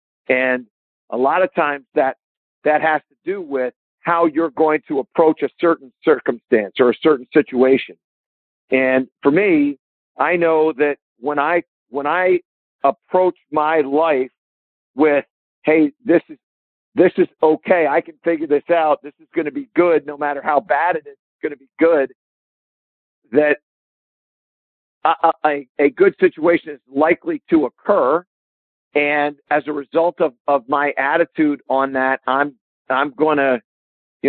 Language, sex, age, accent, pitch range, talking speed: English, male, 50-69, American, 130-160 Hz, 160 wpm